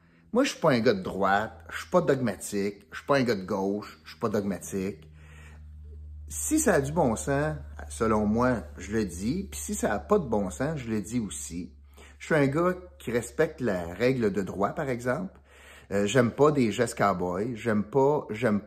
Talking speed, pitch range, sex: 220 wpm, 95-145 Hz, male